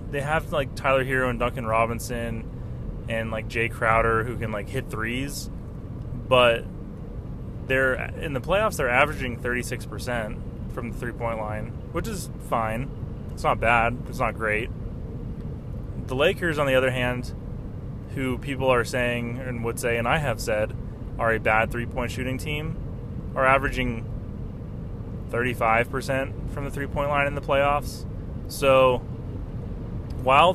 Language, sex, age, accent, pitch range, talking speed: English, male, 20-39, American, 110-130 Hz, 145 wpm